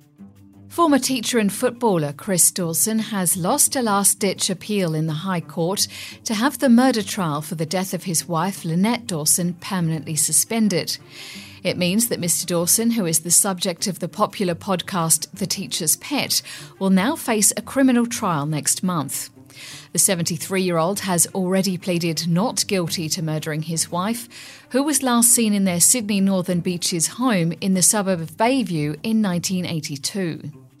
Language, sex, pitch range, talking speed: English, female, 165-225 Hz, 160 wpm